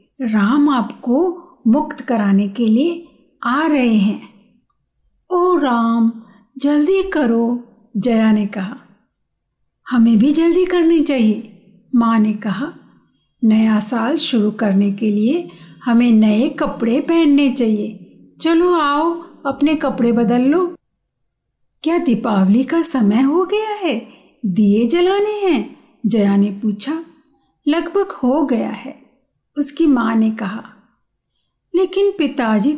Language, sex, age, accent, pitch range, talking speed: Hindi, female, 50-69, native, 220-300 Hz, 115 wpm